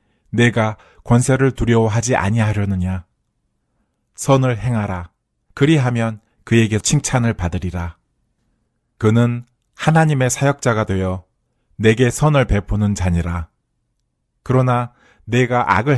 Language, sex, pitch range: Korean, male, 95-125 Hz